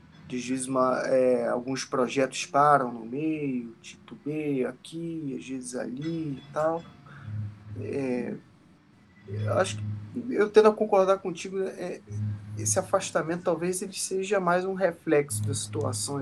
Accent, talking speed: Brazilian, 130 wpm